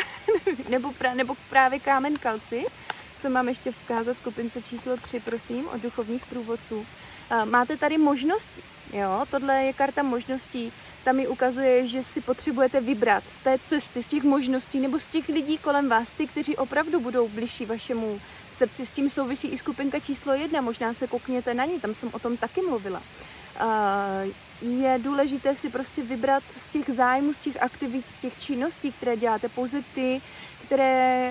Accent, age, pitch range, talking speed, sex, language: native, 20-39, 245-285 Hz, 170 wpm, female, Czech